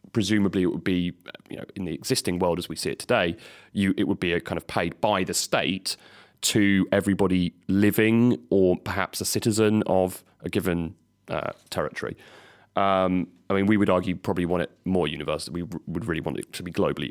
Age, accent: 30-49, British